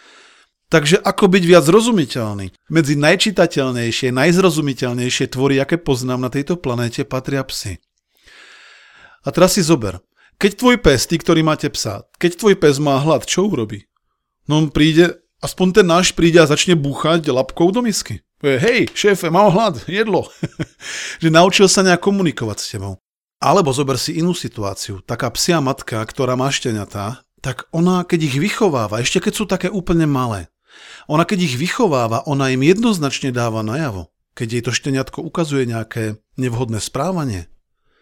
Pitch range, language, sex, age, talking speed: 125-175 Hz, Slovak, male, 40-59, 155 wpm